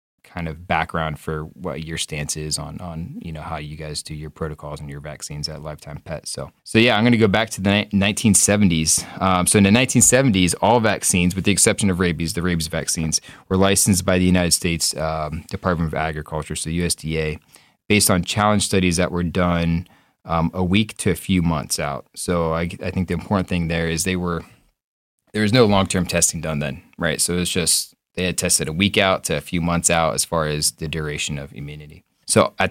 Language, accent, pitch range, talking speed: English, American, 80-95 Hz, 220 wpm